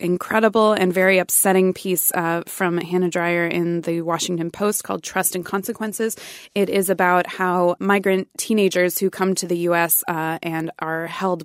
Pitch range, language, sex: 175-200 Hz, English, female